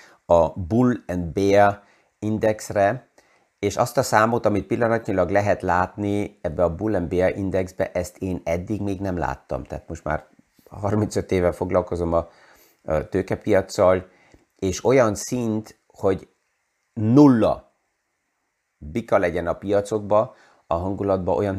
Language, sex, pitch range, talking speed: Hungarian, male, 90-105 Hz, 125 wpm